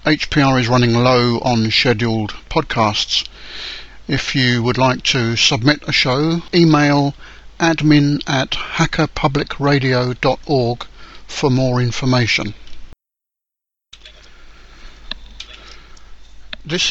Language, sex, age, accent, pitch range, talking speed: English, male, 50-69, British, 120-140 Hz, 80 wpm